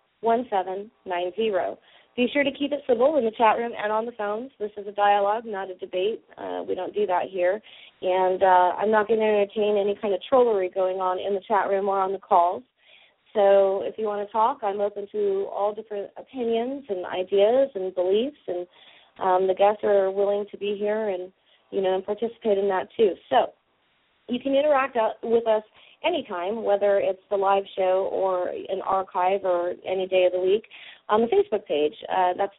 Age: 30-49